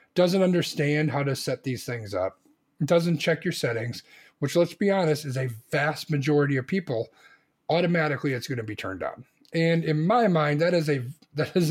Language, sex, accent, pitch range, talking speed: English, male, American, 135-170 Hz, 180 wpm